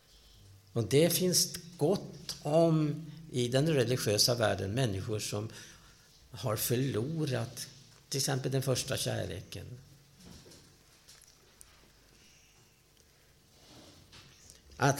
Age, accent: 60-79, Norwegian